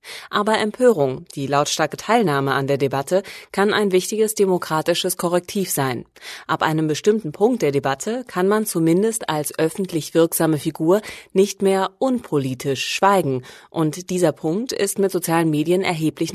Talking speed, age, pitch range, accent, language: 145 wpm, 30-49, 150-195 Hz, German, German